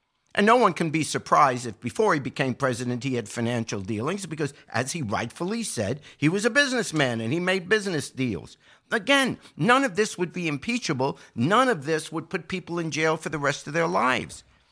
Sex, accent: male, American